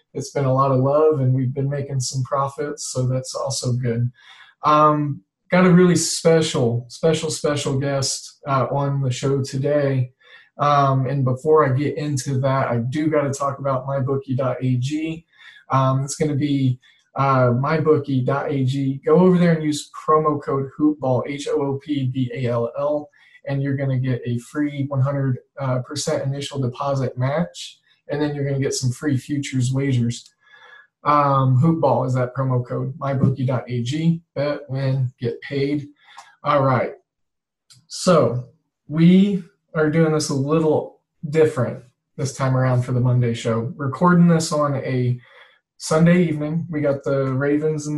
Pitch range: 130-155 Hz